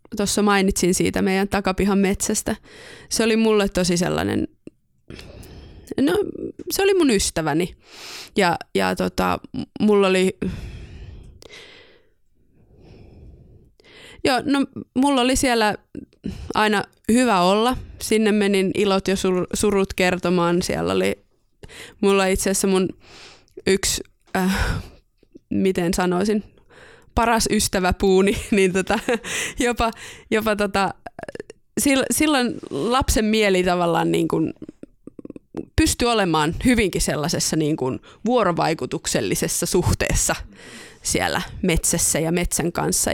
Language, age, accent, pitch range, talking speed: Finnish, 20-39, native, 185-245 Hz, 100 wpm